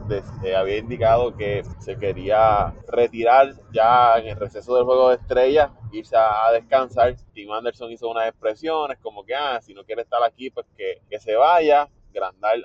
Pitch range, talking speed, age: 110-140 Hz, 180 wpm, 20-39